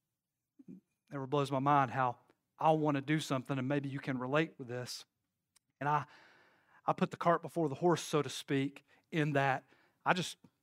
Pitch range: 140-185 Hz